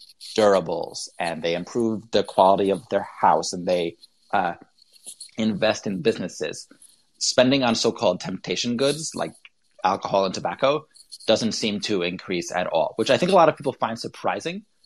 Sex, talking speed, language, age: male, 160 wpm, English, 30-49